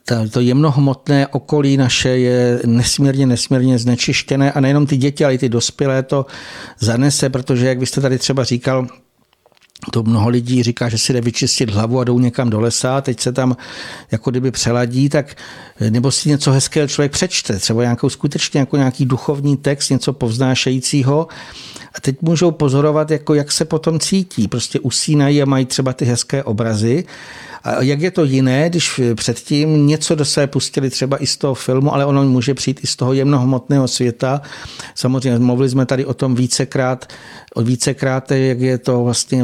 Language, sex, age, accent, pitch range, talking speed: Czech, male, 60-79, native, 125-140 Hz, 175 wpm